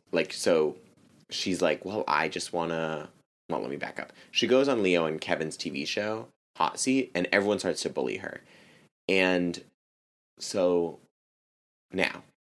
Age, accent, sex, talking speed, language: 20-39, American, male, 160 wpm, English